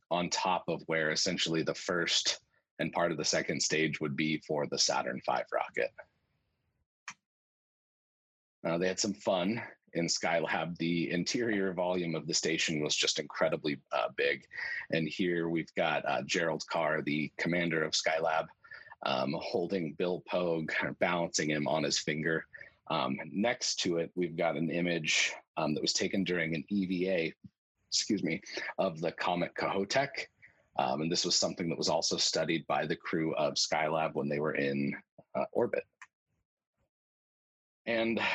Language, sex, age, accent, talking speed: English, male, 30-49, American, 160 wpm